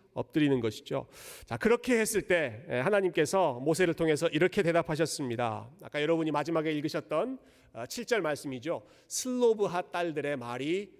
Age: 40-59